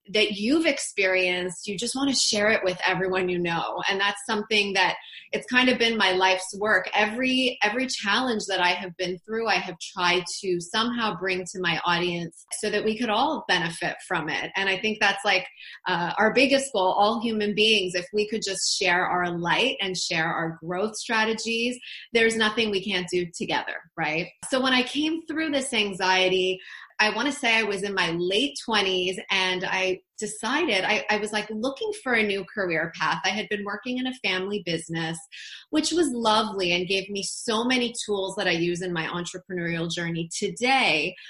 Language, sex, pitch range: English, female, 185-230 Hz